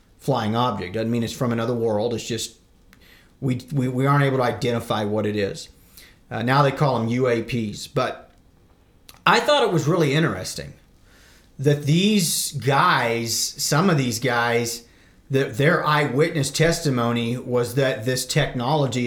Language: English